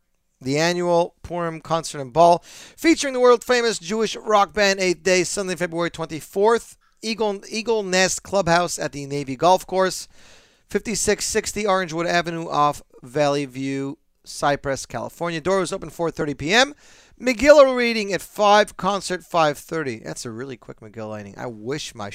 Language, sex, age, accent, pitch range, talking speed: English, male, 40-59, American, 130-195 Hz, 145 wpm